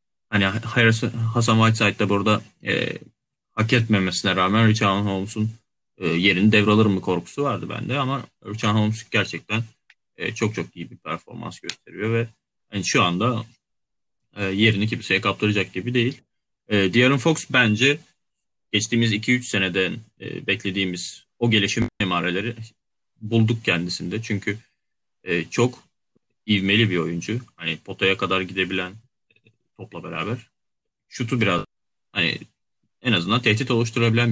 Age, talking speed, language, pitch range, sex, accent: 30-49, 130 wpm, Turkish, 95-115 Hz, male, native